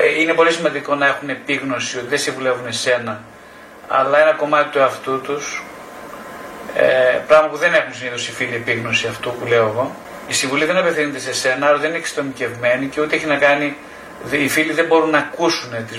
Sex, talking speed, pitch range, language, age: male, 190 wpm, 125-155 Hz, Greek, 30-49